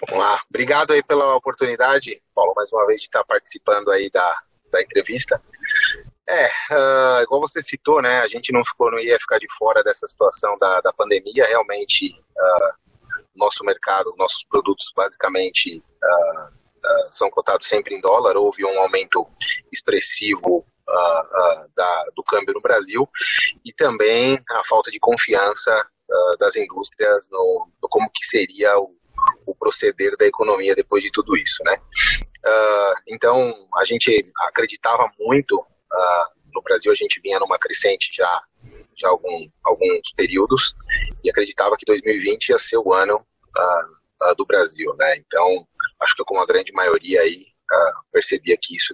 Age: 30-49